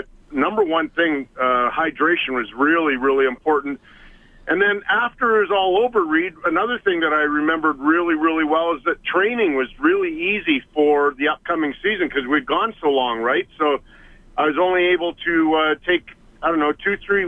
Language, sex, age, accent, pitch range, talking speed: English, male, 50-69, American, 140-175 Hz, 185 wpm